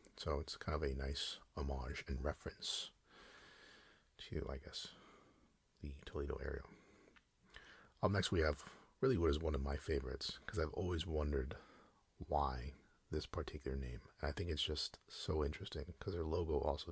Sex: male